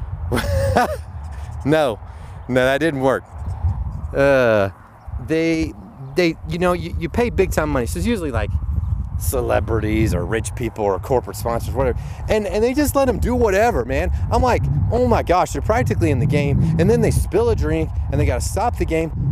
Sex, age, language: male, 30-49, English